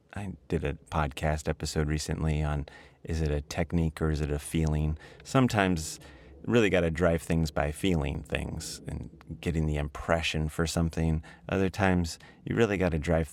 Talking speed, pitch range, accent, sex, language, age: 170 wpm, 75-85 Hz, American, male, English, 30-49